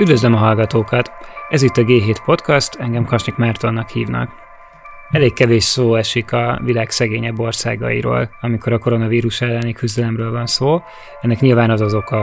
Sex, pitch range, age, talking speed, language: male, 110-125 Hz, 20-39, 155 wpm, Hungarian